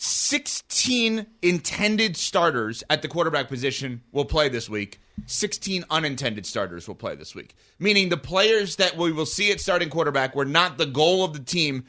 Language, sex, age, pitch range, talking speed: English, male, 30-49, 140-205 Hz, 175 wpm